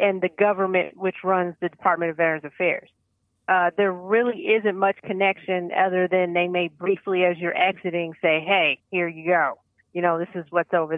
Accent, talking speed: American, 190 wpm